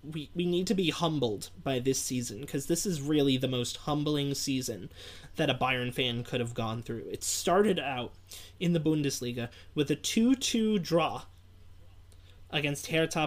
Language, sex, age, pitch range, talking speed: English, male, 20-39, 120-185 Hz, 165 wpm